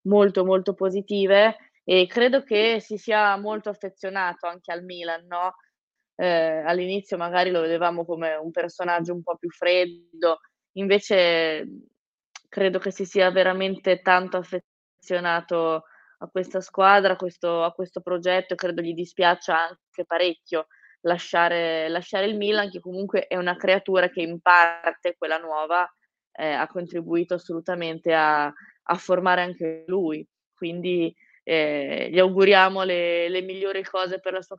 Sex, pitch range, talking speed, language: female, 170-195 Hz, 140 wpm, Italian